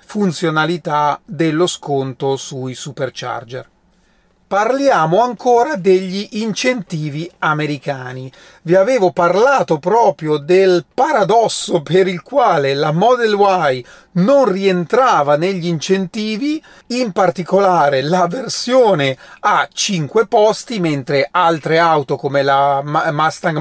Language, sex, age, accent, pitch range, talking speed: Italian, male, 40-59, native, 155-195 Hz, 100 wpm